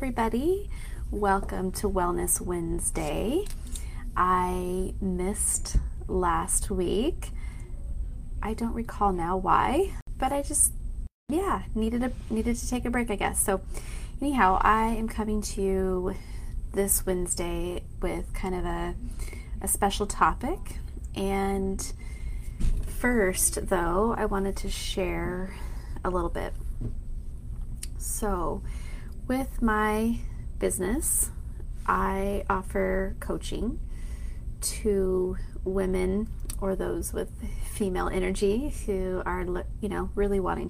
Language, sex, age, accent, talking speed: English, female, 30-49, American, 110 wpm